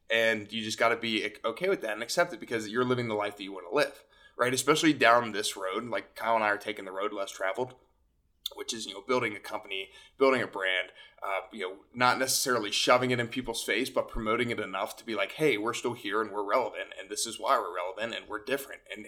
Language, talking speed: English, 255 wpm